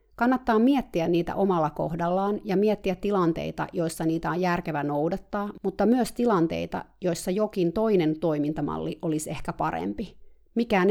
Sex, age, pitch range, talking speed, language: female, 30-49, 165-210 Hz, 130 wpm, Finnish